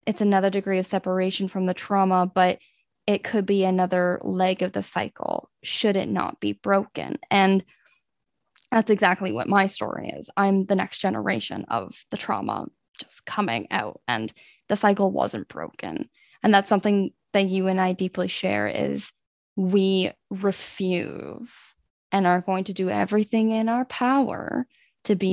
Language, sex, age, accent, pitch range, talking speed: English, female, 10-29, American, 185-210 Hz, 160 wpm